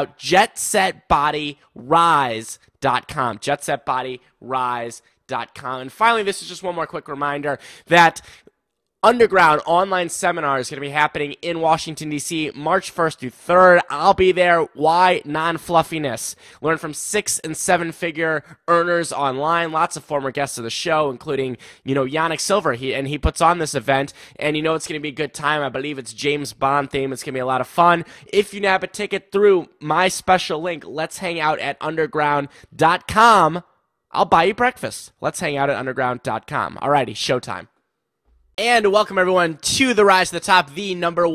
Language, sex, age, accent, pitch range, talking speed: English, male, 20-39, American, 145-180 Hz, 175 wpm